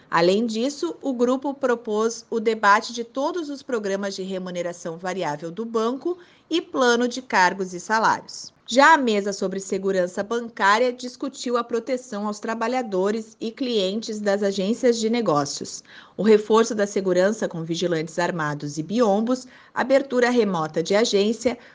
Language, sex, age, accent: Portuguese, female, 30-49, Brazilian